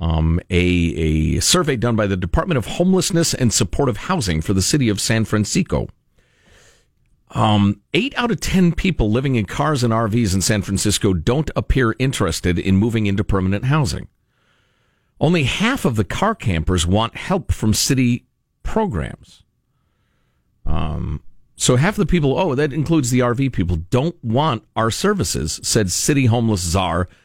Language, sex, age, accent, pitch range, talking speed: English, male, 50-69, American, 95-125 Hz, 155 wpm